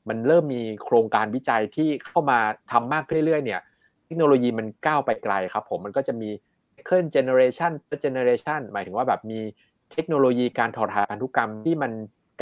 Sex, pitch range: male, 110-145 Hz